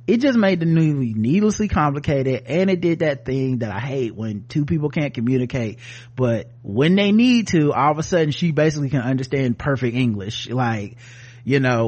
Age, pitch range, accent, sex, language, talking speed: 30-49, 120-165 Hz, American, male, English, 190 wpm